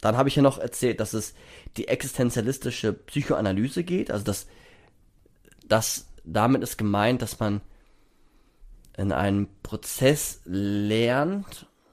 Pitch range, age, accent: 110-145 Hz, 20-39, German